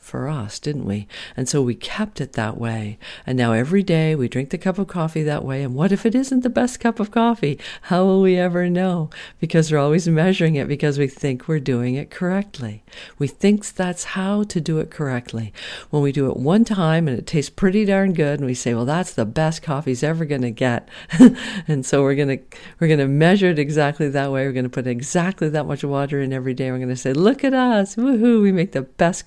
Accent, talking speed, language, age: American, 240 wpm, English, 50-69